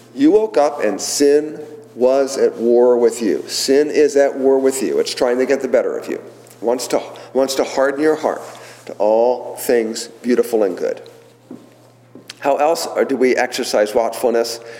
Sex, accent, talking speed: male, American, 175 wpm